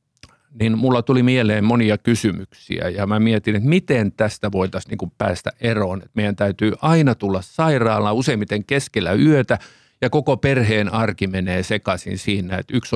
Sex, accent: male, native